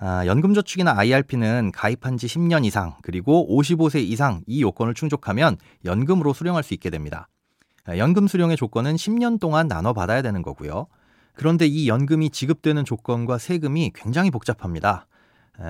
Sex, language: male, Korean